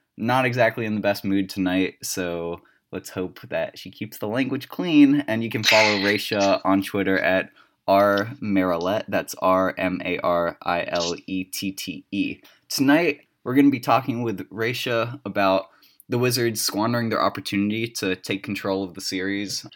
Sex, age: male, 20-39